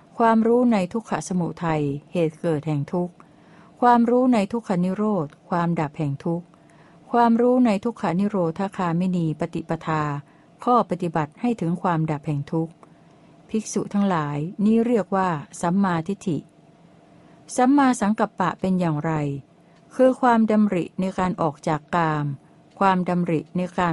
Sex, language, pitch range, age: female, Thai, 165-200 Hz, 60-79